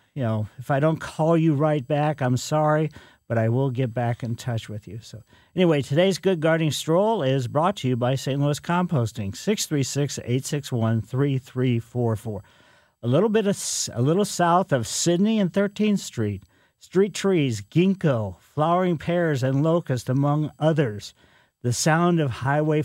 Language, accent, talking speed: English, American, 160 wpm